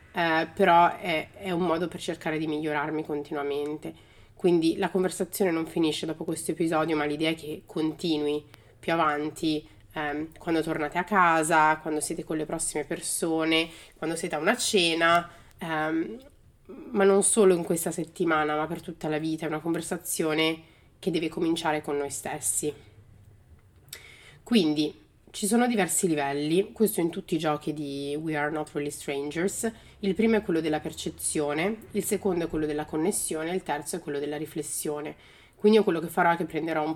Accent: native